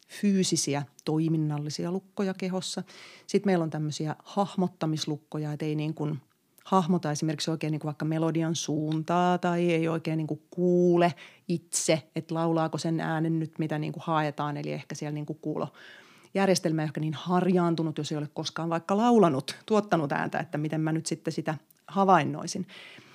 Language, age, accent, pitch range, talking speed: Finnish, 30-49, native, 150-180 Hz, 160 wpm